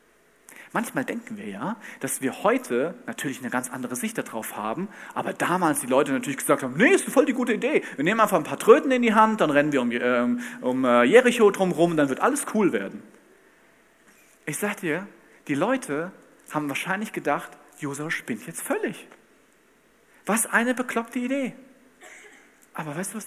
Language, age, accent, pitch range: German, 40-59, German, 180-255 Hz